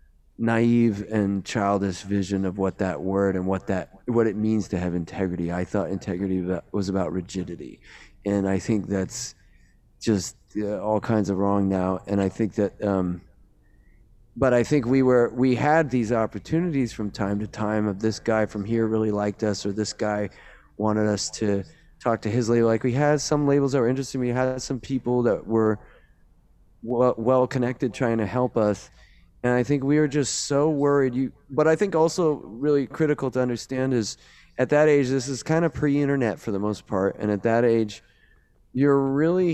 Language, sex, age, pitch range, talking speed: English, male, 30-49, 100-130 Hz, 195 wpm